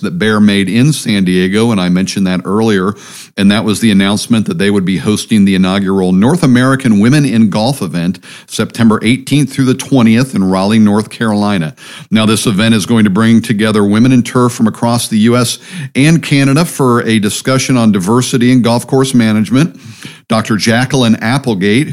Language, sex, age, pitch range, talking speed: English, male, 50-69, 100-125 Hz, 185 wpm